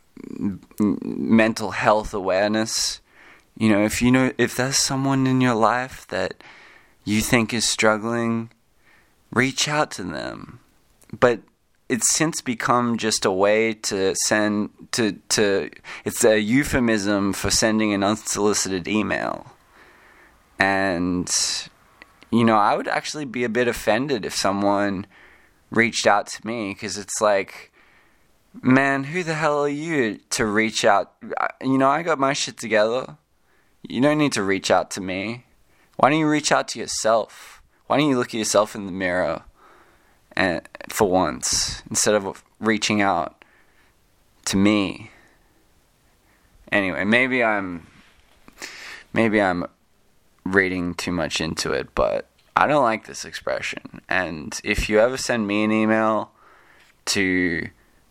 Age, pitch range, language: 20-39, 100-125 Hz, English